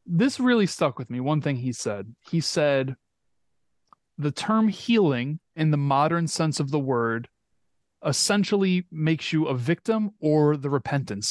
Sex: male